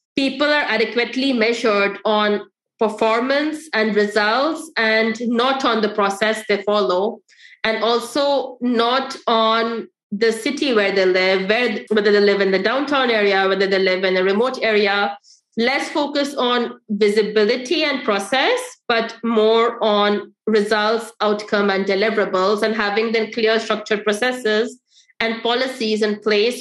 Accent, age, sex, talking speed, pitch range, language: Indian, 20-39, female, 140 wpm, 215-255 Hz, English